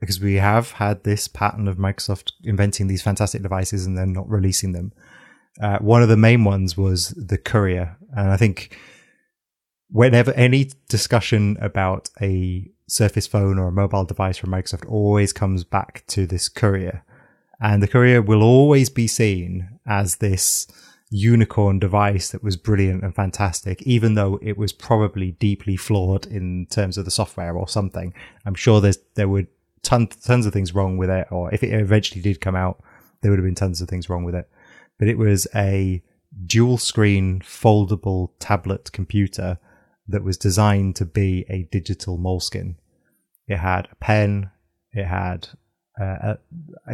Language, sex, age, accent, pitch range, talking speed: English, male, 20-39, British, 95-110 Hz, 165 wpm